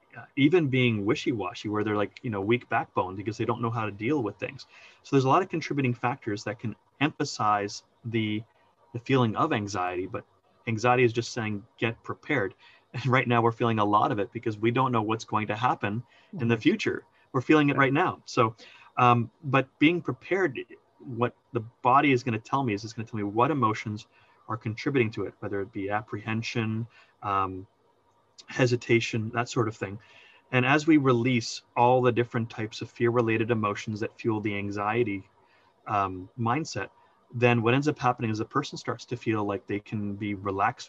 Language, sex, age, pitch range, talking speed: English, male, 30-49, 105-125 Hz, 200 wpm